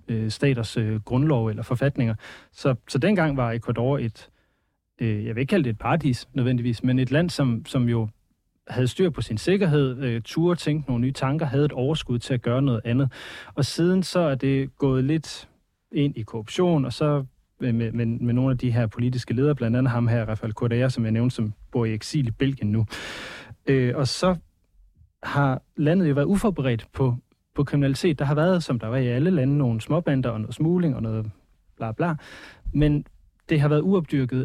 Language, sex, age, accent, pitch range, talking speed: Danish, male, 30-49, native, 115-145 Hz, 195 wpm